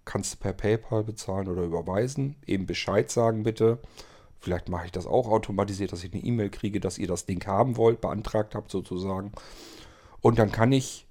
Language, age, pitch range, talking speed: German, 40-59, 90-110 Hz, 190 wpm